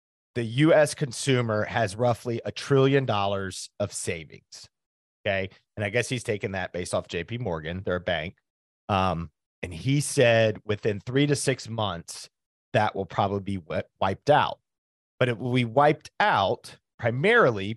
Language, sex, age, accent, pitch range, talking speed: English, male, 30-49, American, 100-140 Hz, 155 wpm